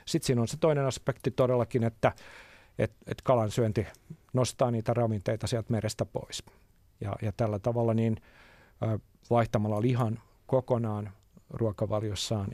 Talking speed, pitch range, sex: 130 wpm, 105-120 Hz, male